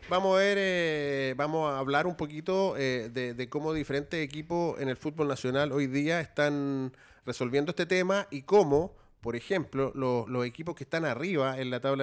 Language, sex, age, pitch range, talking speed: Spanish, male, 30-49, 125-160 Hz, 185 wpm